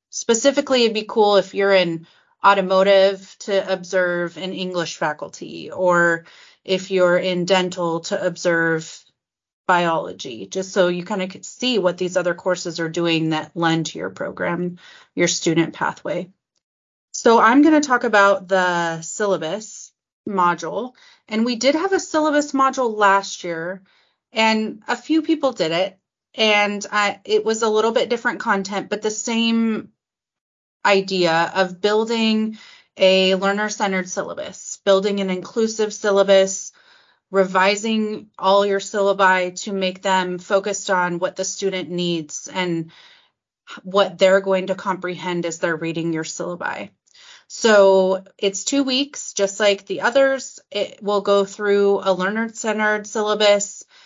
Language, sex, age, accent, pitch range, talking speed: English, female, 30-49, American, 180-215 Hz, 140 wpm